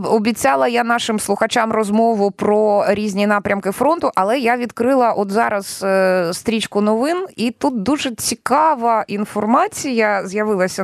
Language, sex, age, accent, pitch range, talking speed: Ukrainian, female, 20-39, native, 185-250 Hz, 120 wpm